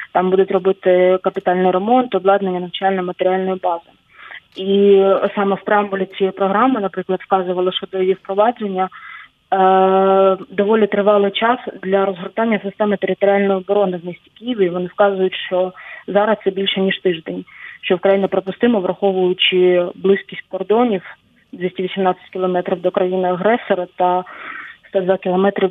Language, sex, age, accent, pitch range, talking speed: Ukrainian, female, 20-39, native, 185-200 Hz, 125 wpm